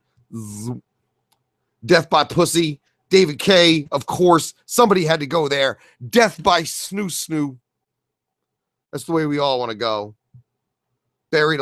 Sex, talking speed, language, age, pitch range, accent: male, 130 wpm, English, 30-49, 120-175 Hz, American